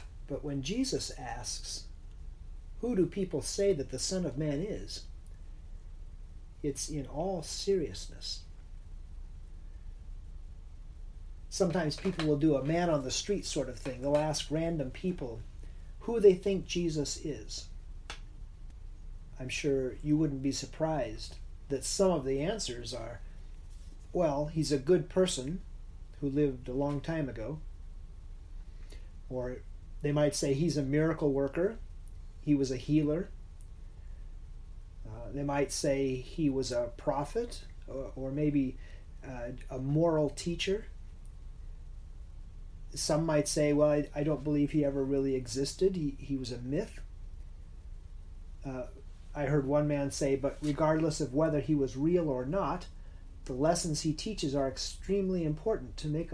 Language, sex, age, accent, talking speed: English, male, 40-59, American, 135 wpm